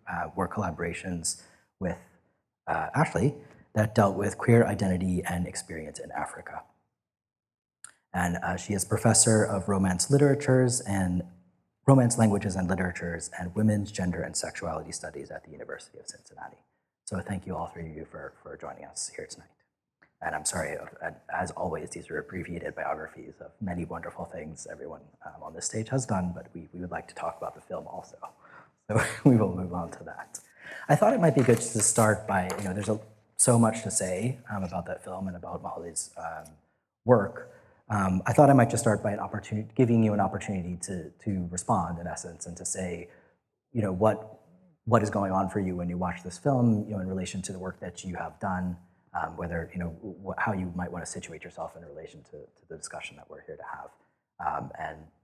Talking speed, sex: 205 wpm, male